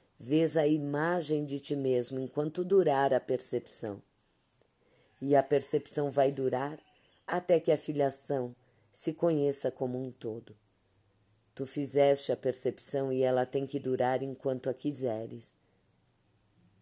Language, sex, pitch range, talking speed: Portuguese, female, 130-155 Hz, 130 wpm